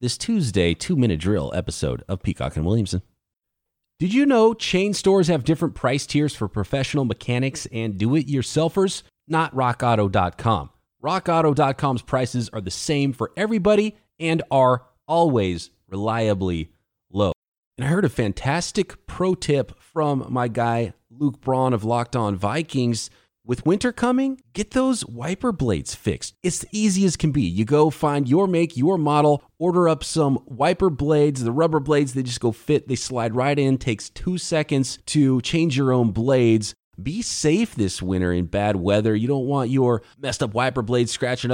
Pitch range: 115-165 Hz